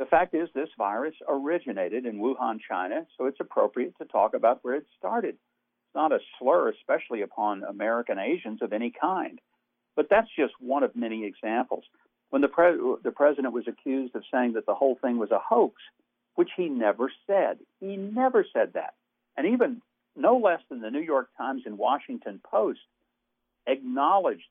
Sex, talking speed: male, 175 wpm